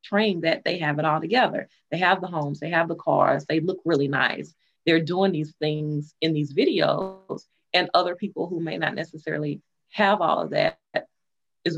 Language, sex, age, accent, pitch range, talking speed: English, female, 30-49, American, 160-205 Hz, 195 wpm